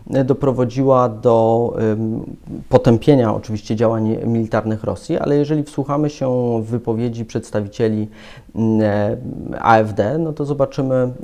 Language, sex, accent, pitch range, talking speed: Polish, male, native, 110-140 Hz, 95 wpm